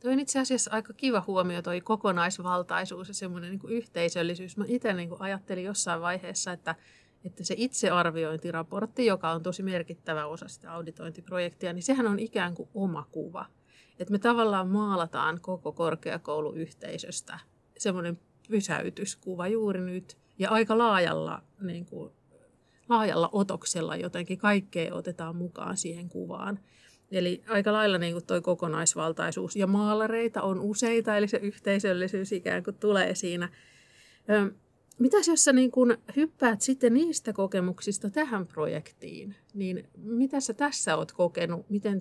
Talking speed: 135 wpm